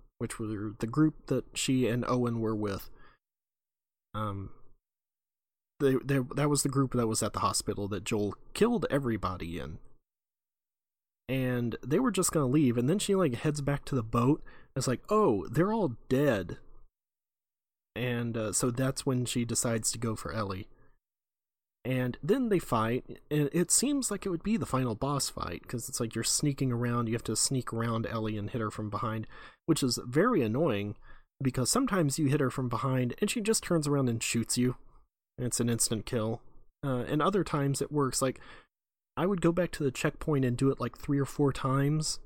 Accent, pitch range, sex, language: American, 115-145 Hz, male, English